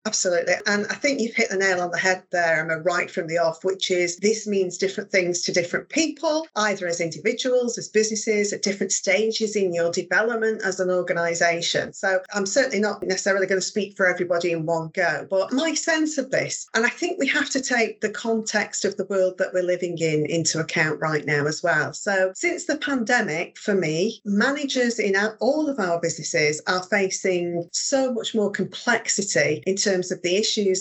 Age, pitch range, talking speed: 40-59, 175-220 Hz, 200 wpm